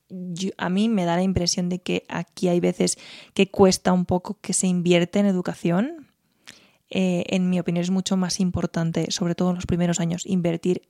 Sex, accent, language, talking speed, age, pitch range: female, Spanish, Spanish, 200 wpm, 20-39, 175-200 Hz